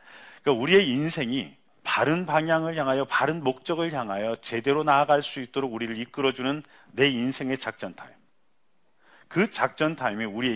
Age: 40-59